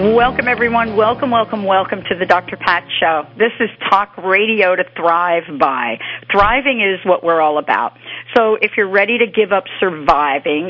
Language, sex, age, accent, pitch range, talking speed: English, female, 50-69, American, 170-220 Hz, 175 wpm